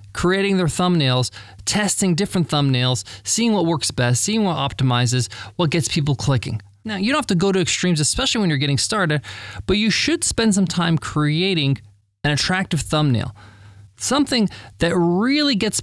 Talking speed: 165 wpm